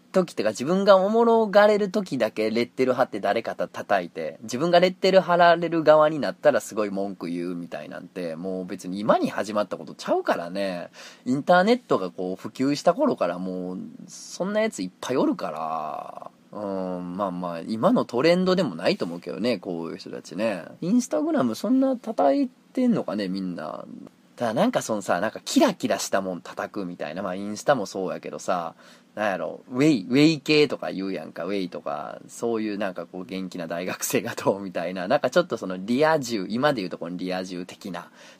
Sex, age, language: male, 20-39, Japanese